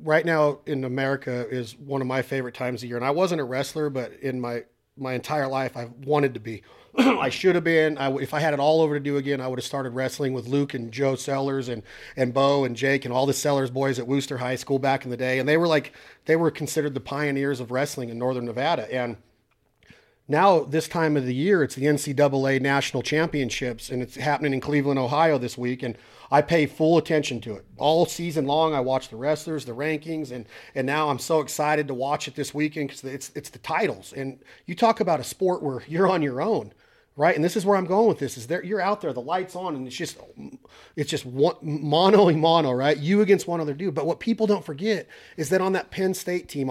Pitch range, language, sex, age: 130-160 Hz, English, male, 40-59